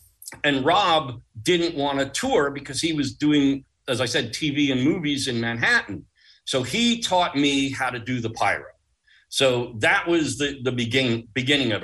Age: 50-69